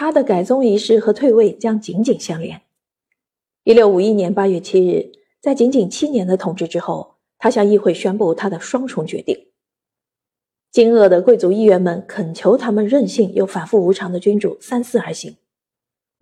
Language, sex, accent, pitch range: Chinese, female, native, 190-245 Hz